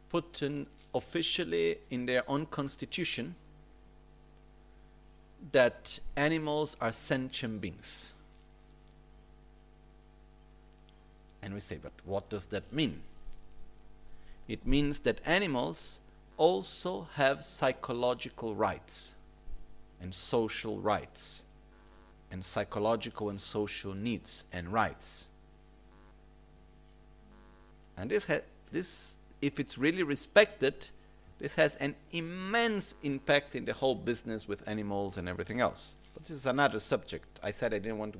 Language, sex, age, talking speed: Italian, male, 50-69, 110 wpm